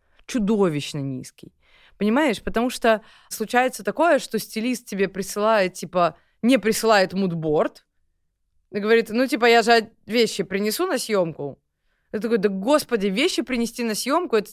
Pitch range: 165-245 Hz